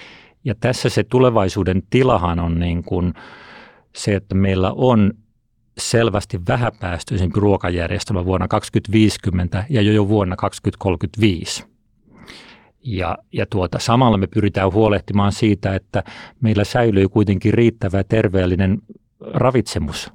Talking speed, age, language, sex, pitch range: 115 wpm, 40-59, Finnish, male, 95-115 Hz